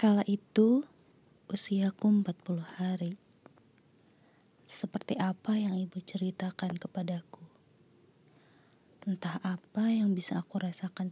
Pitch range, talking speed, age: 180-205 Hz, 95 wpm, 20-39